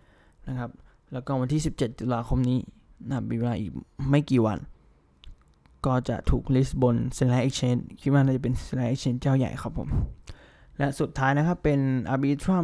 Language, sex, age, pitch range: Thai, male, 20-39, 115-140 Hz